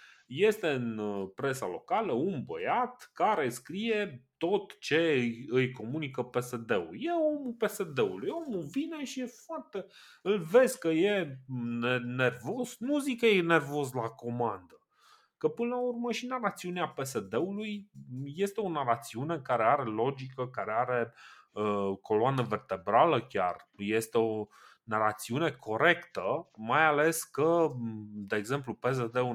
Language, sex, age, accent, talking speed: Romanian, male, 30-49, native, 130 wpm